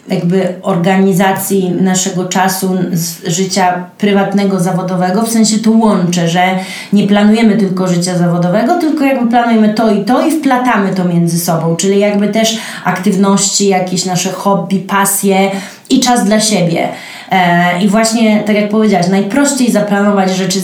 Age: 20-39